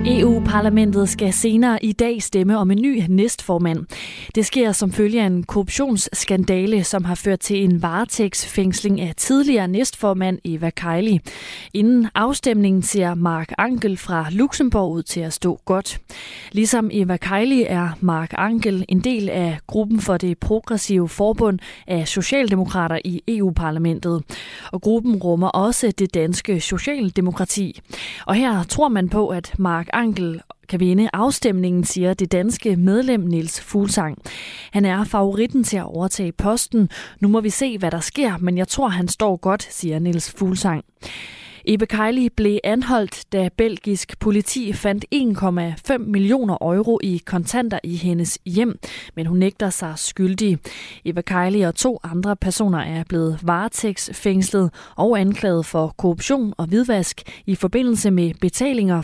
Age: 20-39